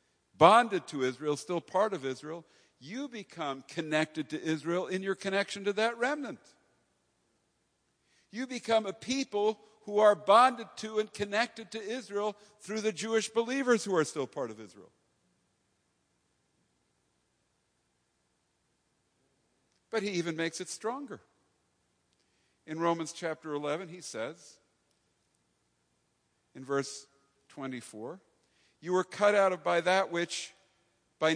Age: 60-79